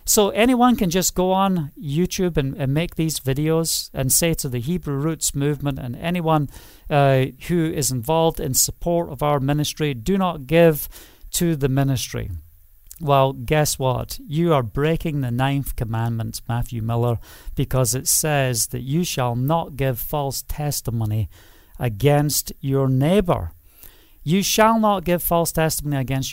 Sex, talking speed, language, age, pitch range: male, 155 wpm, English, 40-59, 125-170 Hz